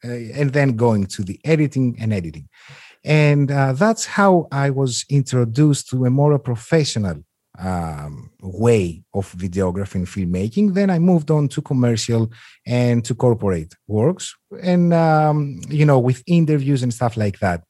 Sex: male